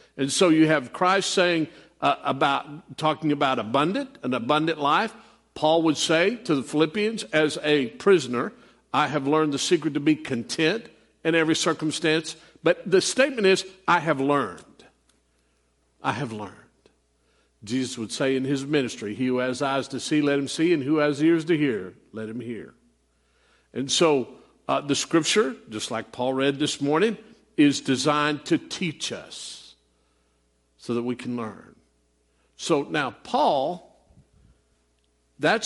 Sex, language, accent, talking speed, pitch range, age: male, English, American, 155 wpm, 125-165 Hz, 50-69